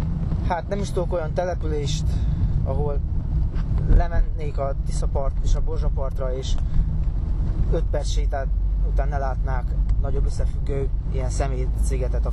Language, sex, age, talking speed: Hungarian, male, 20-39, 130 wpm